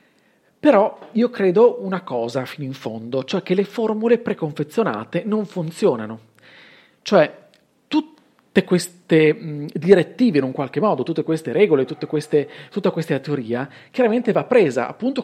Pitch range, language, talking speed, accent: 145-205 Hz, Italian, 130 wpm, native